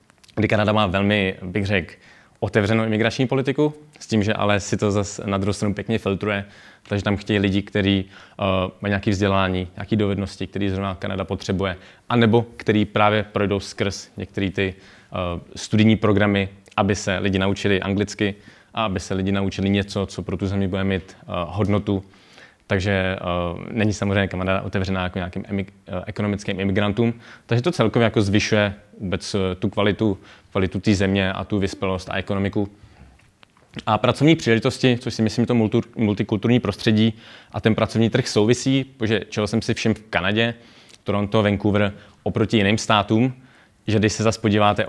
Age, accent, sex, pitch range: 20-39, native, male, 100-110 Hz